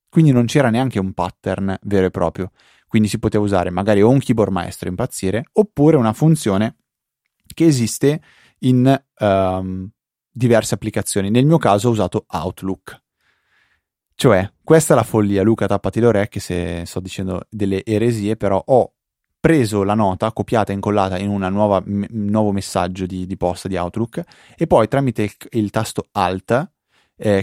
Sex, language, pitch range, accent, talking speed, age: male, Italian, 95-125 Hz, native, 160 wpm, 20-39